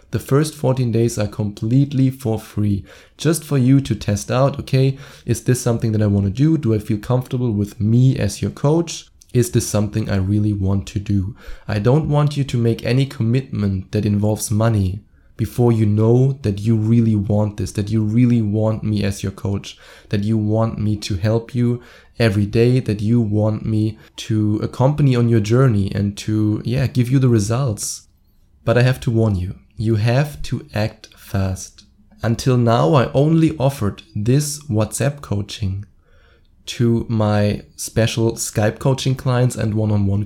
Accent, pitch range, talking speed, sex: German, 105-125 Hz, 175 wpm, male